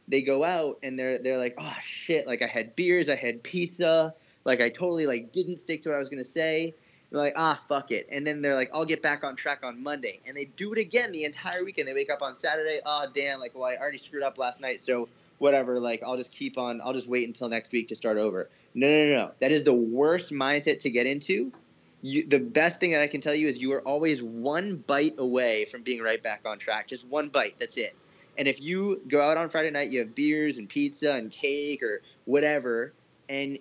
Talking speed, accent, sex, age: 250 wpm, American, male, 20-39